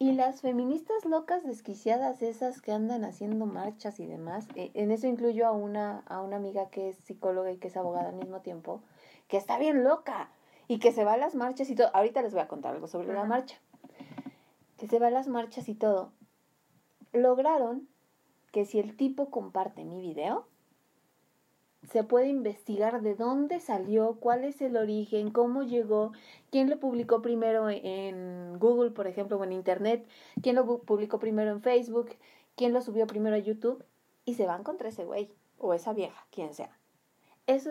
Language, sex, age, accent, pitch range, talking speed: Spanish, female, 30-49, Mexican, 200-245 Hz, 185 wpm